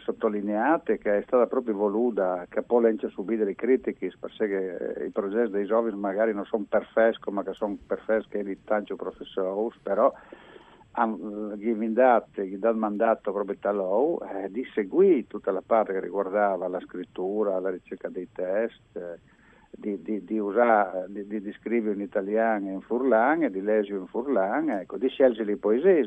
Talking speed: 165 wpm